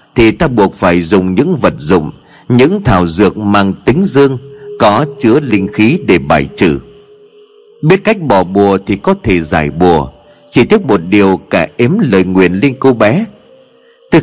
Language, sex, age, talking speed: Vietnamese, male, 30-49, 175 wpm